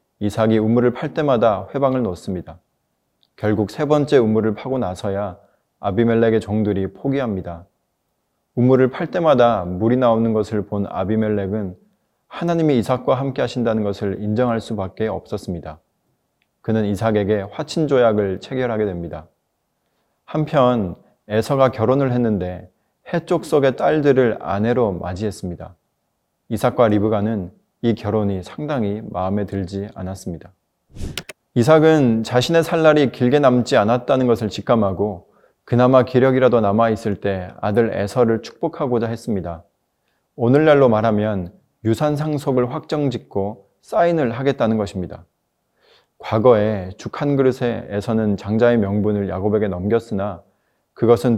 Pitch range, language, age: 100-125 Hz, Korean, 20-39